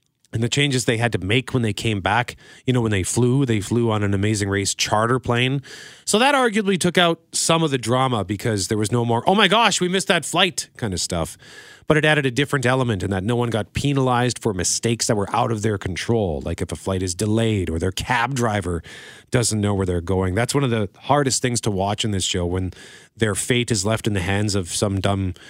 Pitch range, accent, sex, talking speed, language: 105-145 Hz, American, male, 245 wpm, English